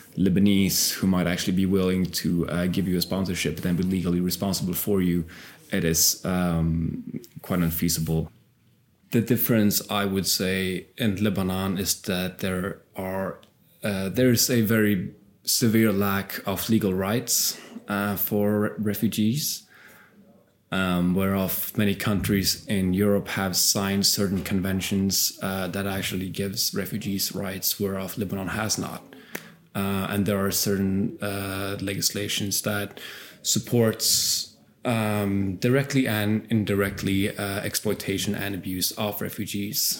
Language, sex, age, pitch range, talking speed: English, male, 20-39, 95-105 Hz, 130 wpm